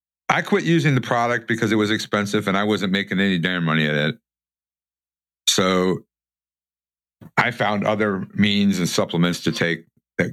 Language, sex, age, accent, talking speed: English, male, 50-69, American, 165 wpm